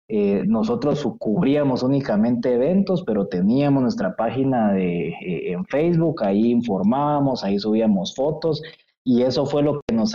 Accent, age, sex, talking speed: Mexican, 20-39, male, 140 wpm